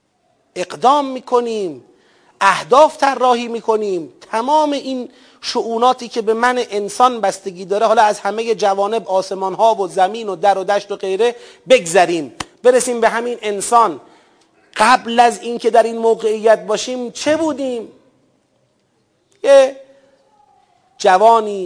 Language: Persian